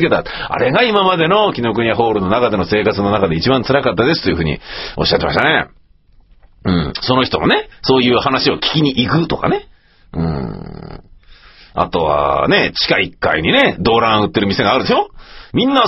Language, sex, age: Japanese, male, 40-59